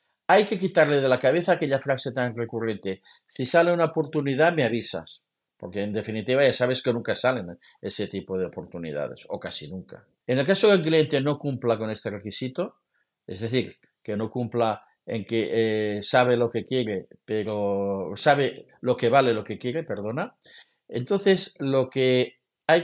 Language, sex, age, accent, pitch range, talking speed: Spanish, male, 50-69, Spanish, 115-160 Hz, 180 wpm